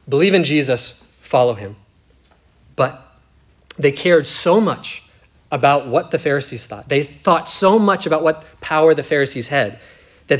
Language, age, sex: English, 30-49, male